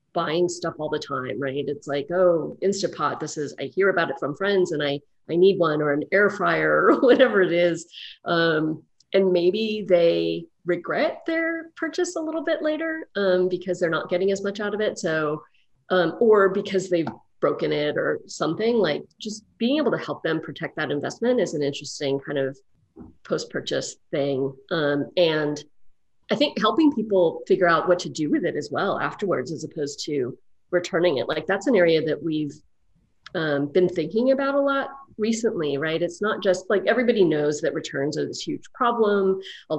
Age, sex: 40-59, female